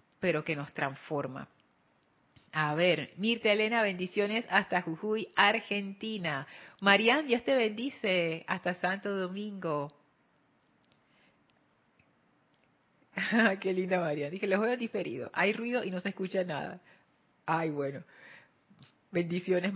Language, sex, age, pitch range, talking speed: Spanish, female, 40-59, 165-215 Hz, 110 wpm